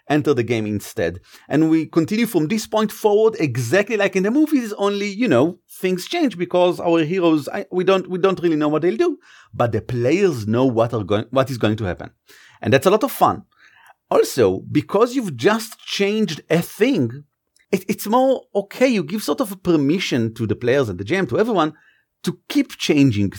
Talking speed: 200 wpm